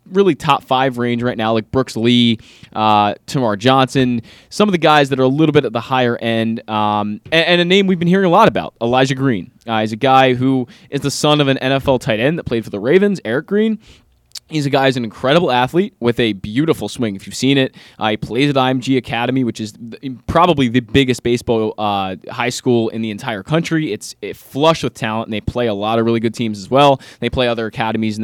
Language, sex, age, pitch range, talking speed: English, male, 20-39, 115-145 Hz, 240 wpm